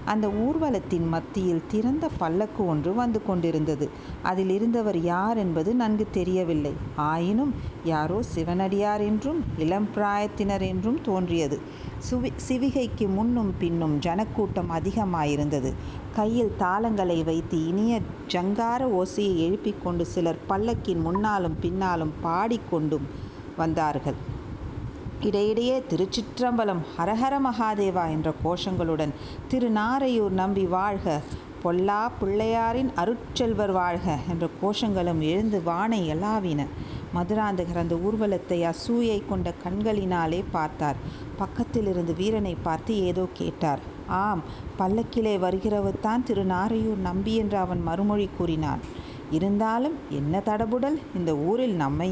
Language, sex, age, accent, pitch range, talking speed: Tamil, female, 50-69, native, 165-220 Hz, 100 wpm